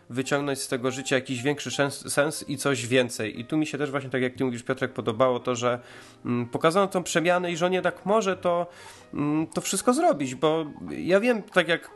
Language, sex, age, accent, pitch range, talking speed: Polish, male, 30-49, native, 140-195 Hz, 205 wpm